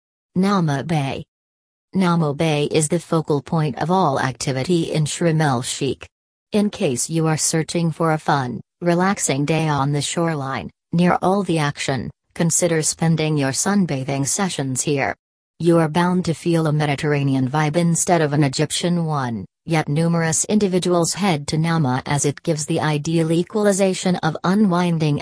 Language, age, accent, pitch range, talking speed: English, 40-59, American, 145-175 Hz, 150 wpm